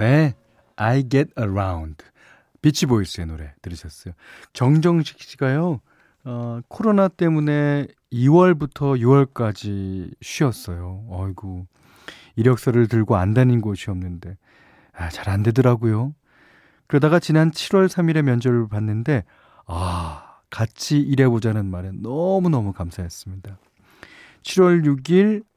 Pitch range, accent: 95-135 Hz, native